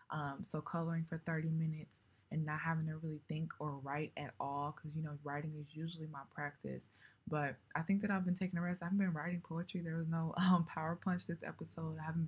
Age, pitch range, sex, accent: 20-39, 150-180 Hz, female, American